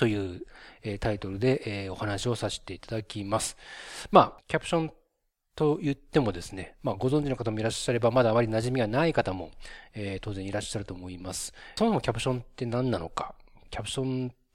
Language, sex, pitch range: Japanese, male, 100-140 Hz